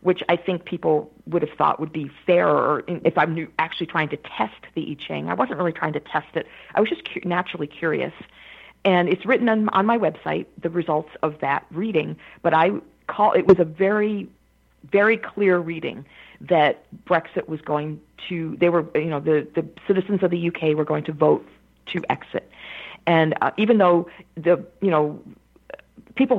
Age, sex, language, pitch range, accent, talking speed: 50-69, female, English, 160-185 Hz, American, 185 wpm